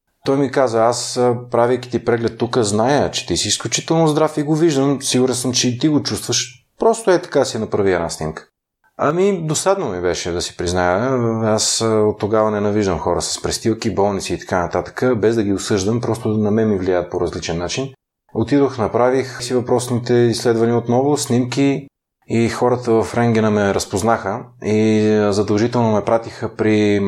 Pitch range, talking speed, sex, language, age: 100-125 Hz, 180 wpm, male, Bulgarian, 30-49